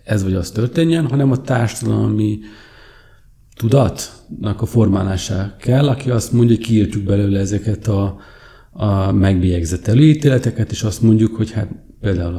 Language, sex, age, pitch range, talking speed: Hungarian, male, 40-59, 95-115 Hz, 130 wpm